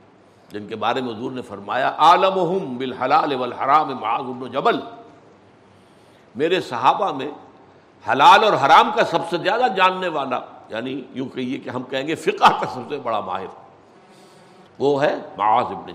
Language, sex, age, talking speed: Urdu, male, 60-79, 135 wpm